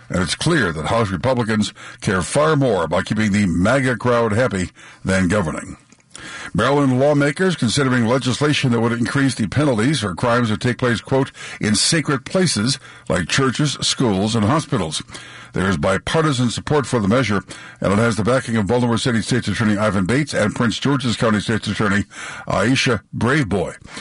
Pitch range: 105-135 Hz